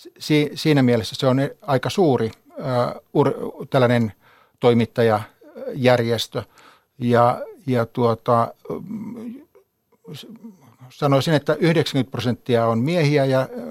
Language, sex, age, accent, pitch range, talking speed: Finnish, male, 60-79, native, 120-160 Hz, 75 wpm